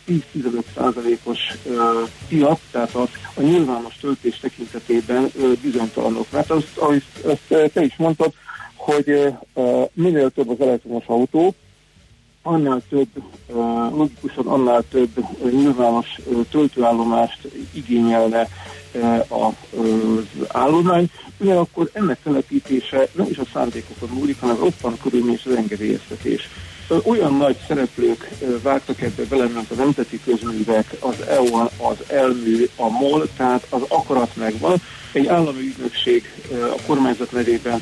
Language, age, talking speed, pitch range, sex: Hungarian, 50-69, 130 wpm, 115-145 Hz, male